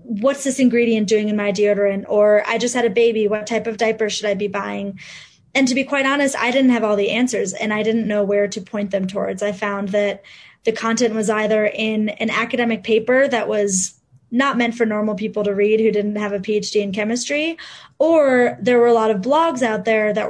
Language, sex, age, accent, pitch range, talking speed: English, female, 20-39, American, 205-235 Hz, 230 wpm